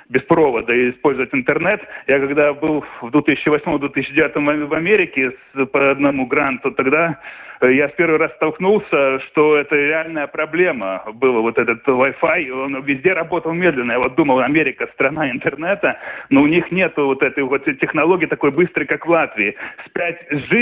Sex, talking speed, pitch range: male, 150 wpm, 140-160 Hz